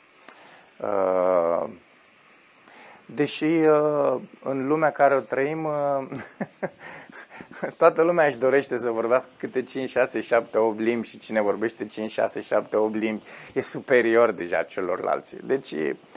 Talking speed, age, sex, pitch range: 115 wpm, 20-39, male, 110-140 Hz